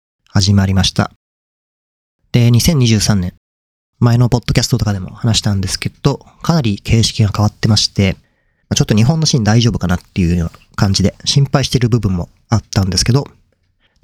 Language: Japanese